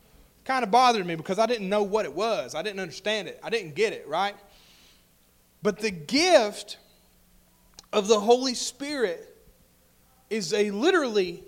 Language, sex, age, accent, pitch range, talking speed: English, male, 30-49, American, 190-245 Hz, 155 wpm